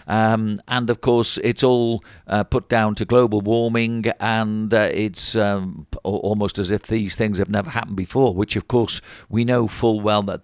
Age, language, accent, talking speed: 50-69, English, British, 190 wpm